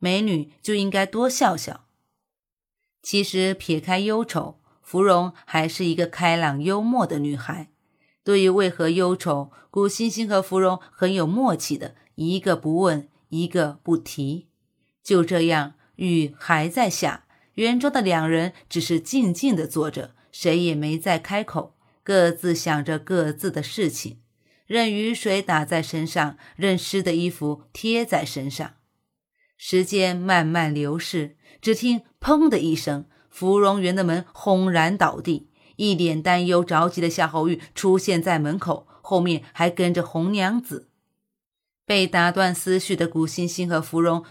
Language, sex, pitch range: Chinese, female, 160-195 Hz